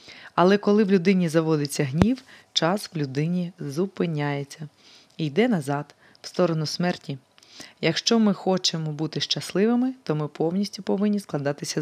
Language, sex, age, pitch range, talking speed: Ukrainian, female, 20-39, 150-200 Hz, 130 wpm